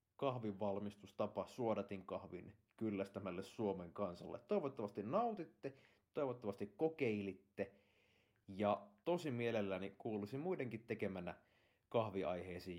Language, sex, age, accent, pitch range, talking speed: Finnish, male, 30-49, native, 100-120 Hz, 80 wpm